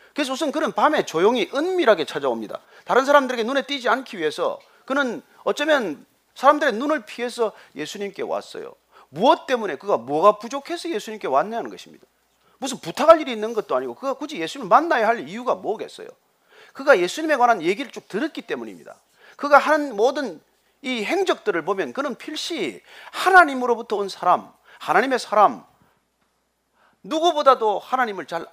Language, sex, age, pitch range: Korean, male, 40-59, 235-325 Hz